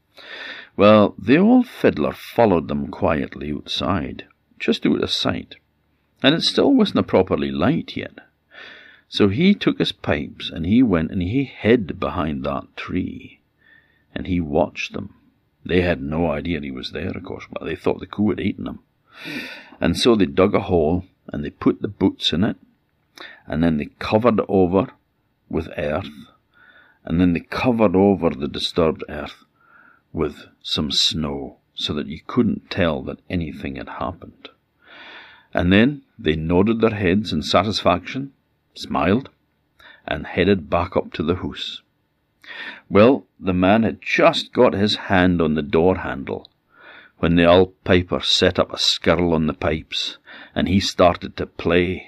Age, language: 50-69, English